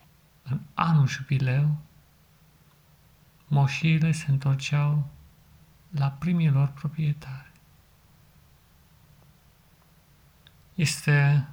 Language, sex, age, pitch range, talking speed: Romanian, male, 50-69, 135-155 Hz, 50 wpm